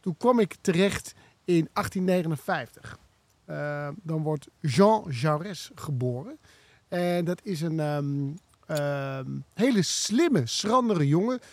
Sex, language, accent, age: male, Dutch, Dutch, 50-69